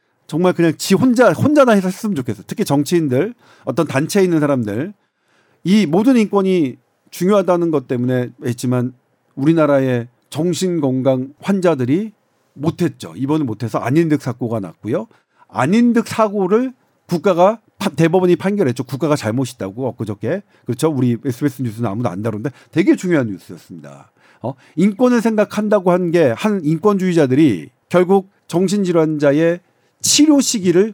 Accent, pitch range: native, 135-205 Hz